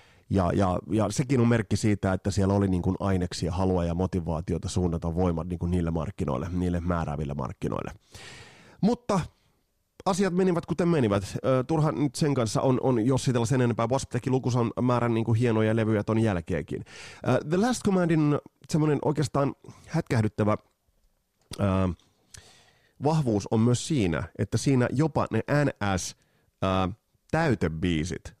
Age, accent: 30-49, native